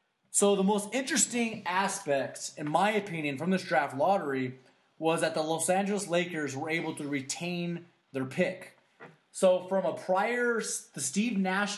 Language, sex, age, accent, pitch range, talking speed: English, male, 20-39, American, 155-190 Hz, 160 wpm